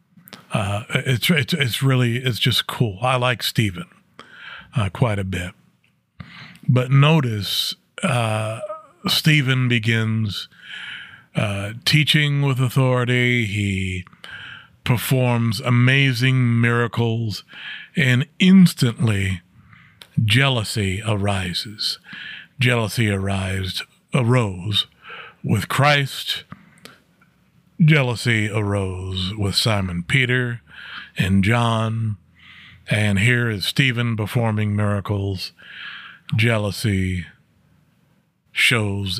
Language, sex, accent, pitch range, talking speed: English, male, American, 100-130 Hz, 80 wpm